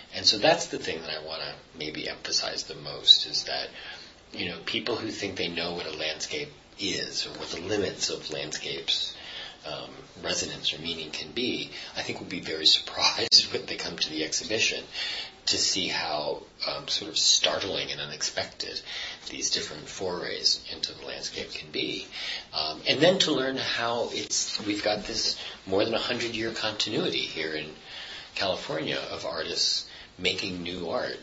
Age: 40-59